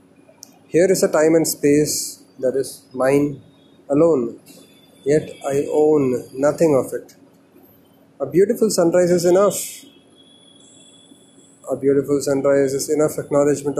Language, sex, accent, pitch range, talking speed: English, male, Indian, 135-155 Hz, 115 wpm